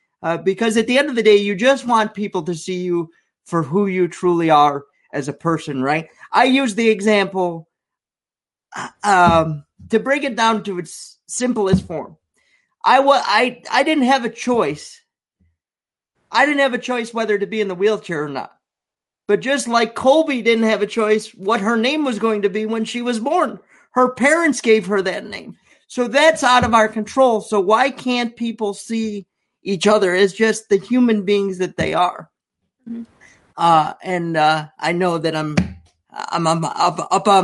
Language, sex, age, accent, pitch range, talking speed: English, male, 40-59, American, 170-230 Hz, 185 wpm